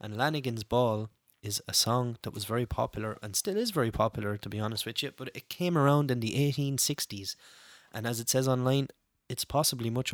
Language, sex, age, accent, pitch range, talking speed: English, male, 20-39, Irish, 115-140 Hz, 205 wpm